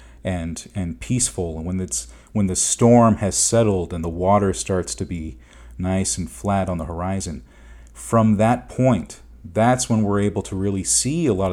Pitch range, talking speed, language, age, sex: 85-110 Hz, 180 wpm, English, 40-59, male